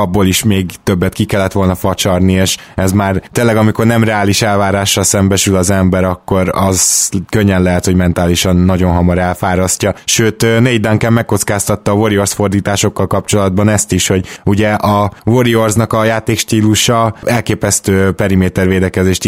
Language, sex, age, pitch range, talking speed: Hungarian, male, 20-39, 95-110 Hz, 145 wpm